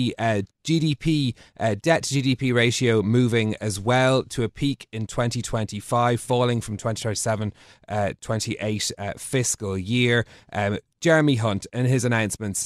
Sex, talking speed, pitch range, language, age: male, 120 wpm, 105-130 Hz, English, 30-49